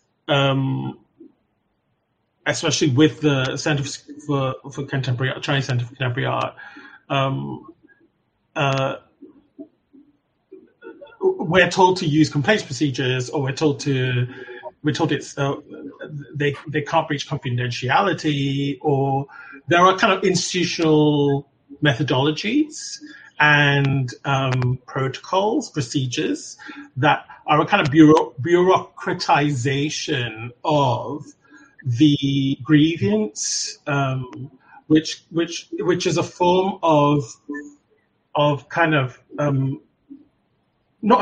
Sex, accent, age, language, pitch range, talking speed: male, British, 30-49, English, 135-175 Hz, 100 wpm